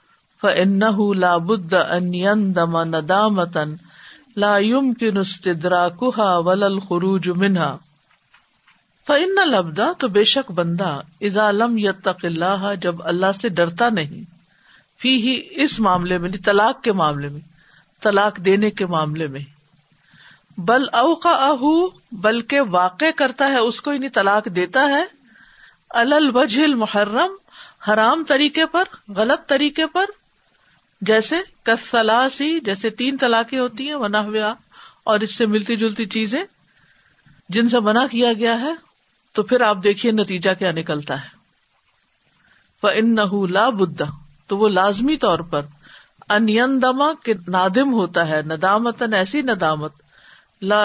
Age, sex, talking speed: 50-69, female, 105 wpm